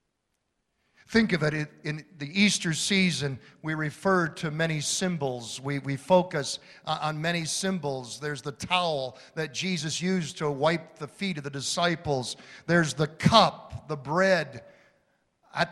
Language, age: English, 50-69